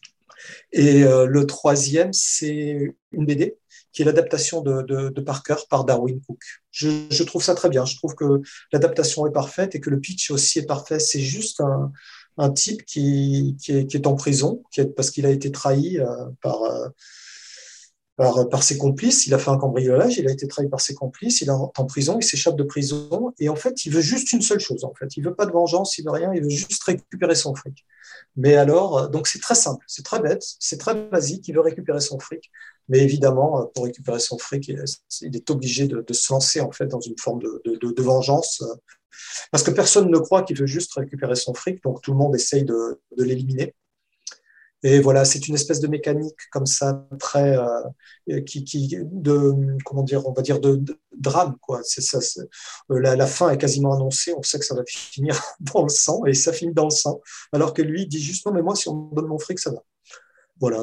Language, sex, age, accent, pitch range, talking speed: French, male, 40-59, French, 135-160 Hz, 215 wpm